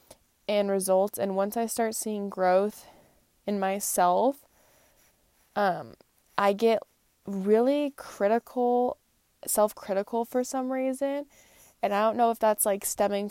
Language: English